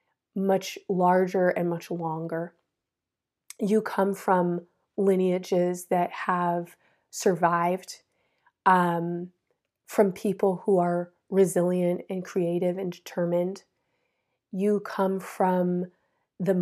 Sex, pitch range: female, 175-200 Hz